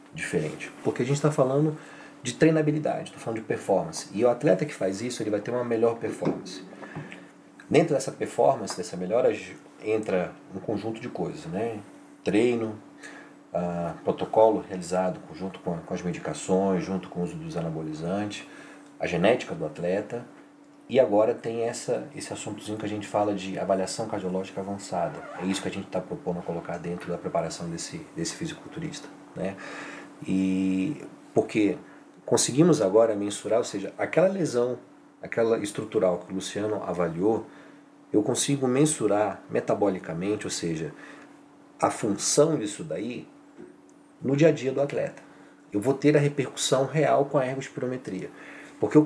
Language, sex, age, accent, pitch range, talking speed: Portuguese, male, 40-59, Brazilian, 95-130 Hz, 155 wpm